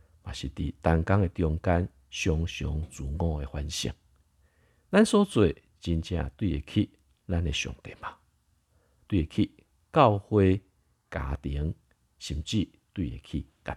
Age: 50-69